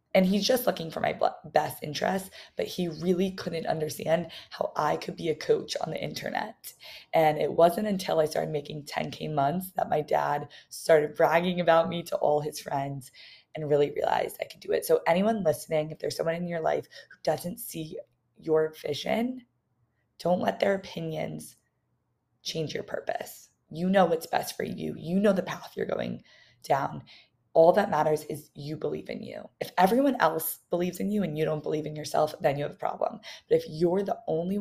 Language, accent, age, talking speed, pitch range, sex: English, American, 20-39, 195 wpm, 150-190 Hz, female